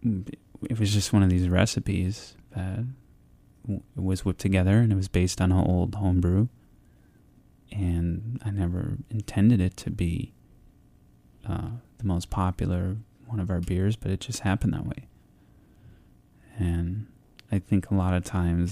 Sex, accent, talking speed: male, American, 150 wpm